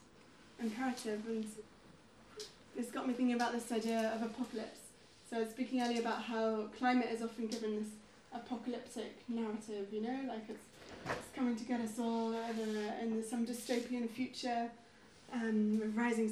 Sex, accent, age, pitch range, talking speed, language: female, British, 20-39, 225-245 Hz, 145 wpm, Swedish